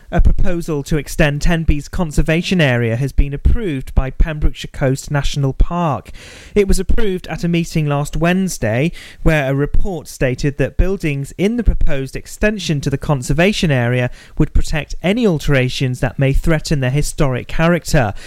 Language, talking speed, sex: English, 155 wpm, male